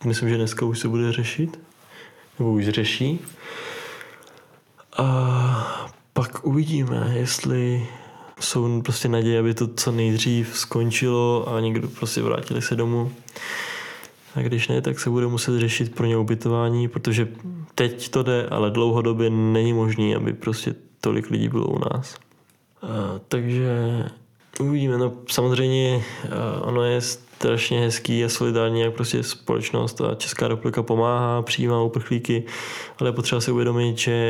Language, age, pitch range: Czech, 20-39, 115-125 Hz